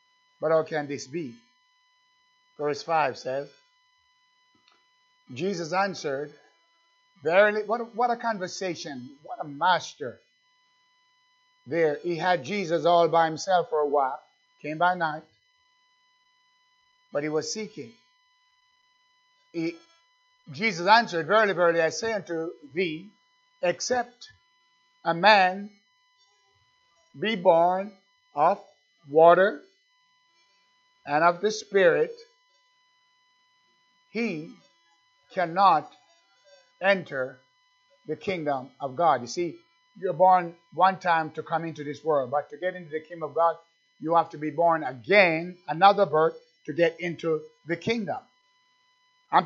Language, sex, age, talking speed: English, male, 60-79, 115 wpm